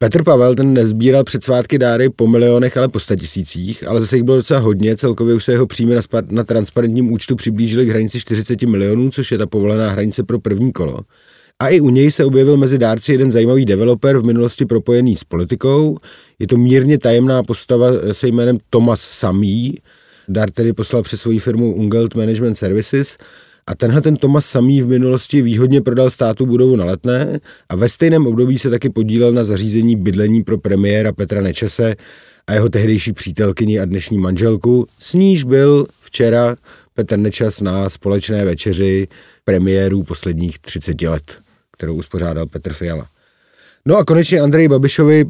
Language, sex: Czech, male